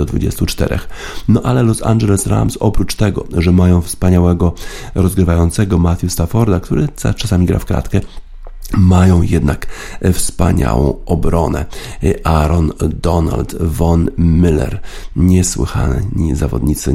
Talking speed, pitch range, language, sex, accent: 105 wpm, 85-100 Hz, Polish, male, native